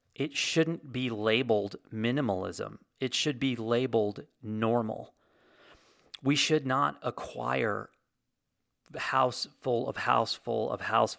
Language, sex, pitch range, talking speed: English, male, 110-140 Hz, 120 wpm